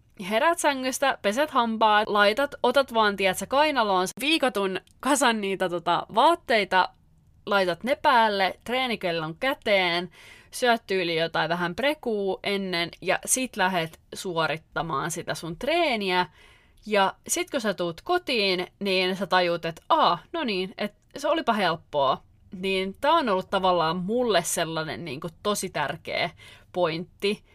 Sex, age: female, 30-49